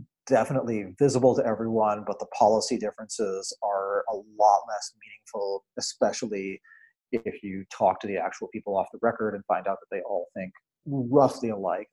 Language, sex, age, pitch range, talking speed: English, male, 30-49, 110-145 Hz, 165 wpm